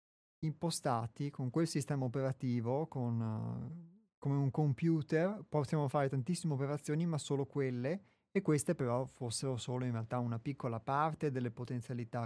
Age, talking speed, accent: 30-49, 140 wpm, native